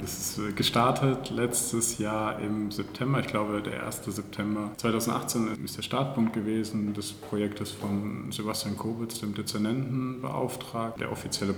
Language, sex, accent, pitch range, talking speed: German, male, German, 95-115 Hz, 135 wpm